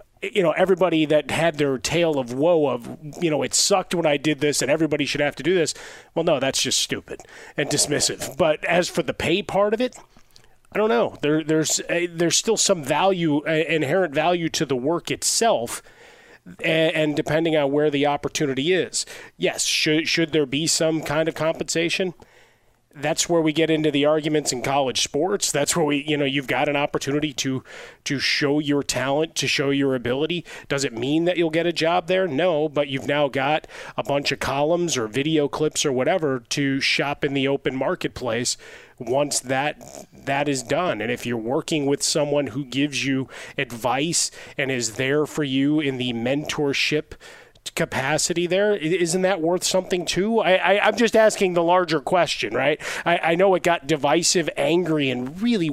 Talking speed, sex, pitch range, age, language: 195 wpm, male, 140-175 Hz, 30-49, English